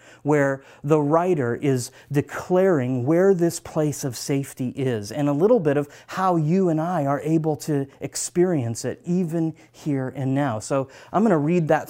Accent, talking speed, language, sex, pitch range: American, 175 wpm, English, male, 130-160 Hz